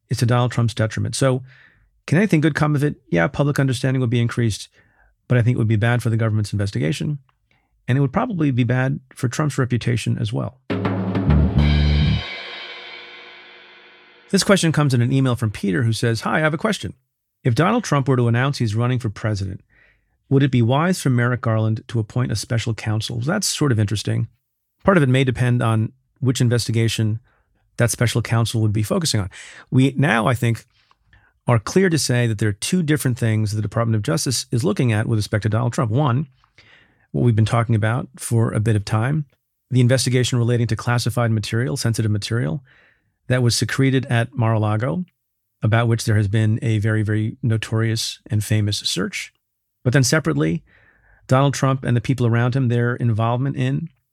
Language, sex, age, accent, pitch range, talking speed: English, male, 40-59, American, 110-135 Hz, 190 wpm